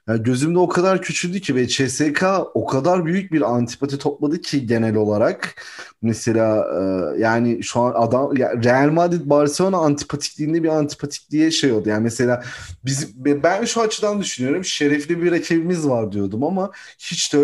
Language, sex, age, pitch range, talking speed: Turkish, male, 30-49, 115-150 Hz, 160 wpm